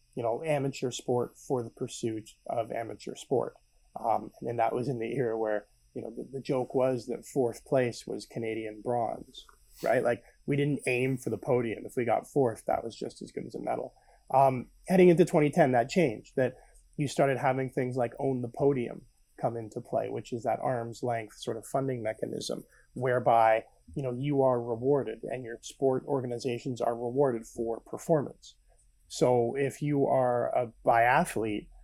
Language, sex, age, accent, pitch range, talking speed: English, male, 30-49, American, 115-135 Hz, 185 wpm